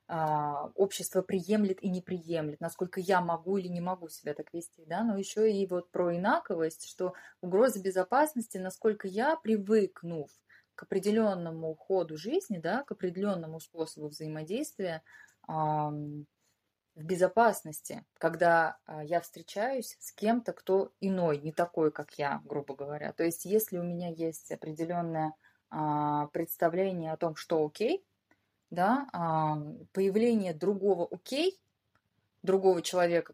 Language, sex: Russian, female